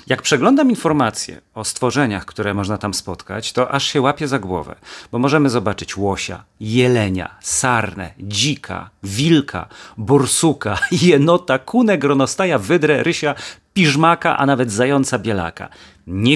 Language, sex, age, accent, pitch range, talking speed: Polish, male, 40-59, native, 105-145 Hz, 130 wpm